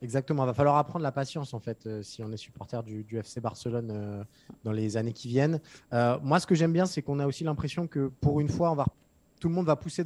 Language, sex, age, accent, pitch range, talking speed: French, male, 20-39, French, 130-155 Hz, 270 wpm